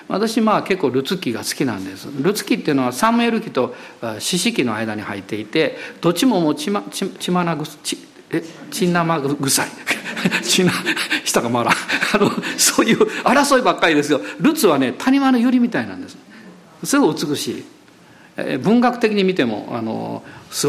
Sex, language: male, Japanese